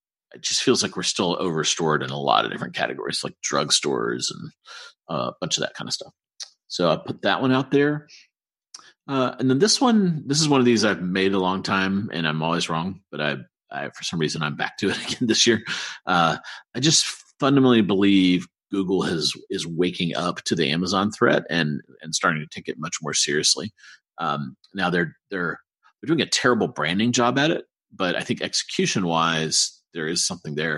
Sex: male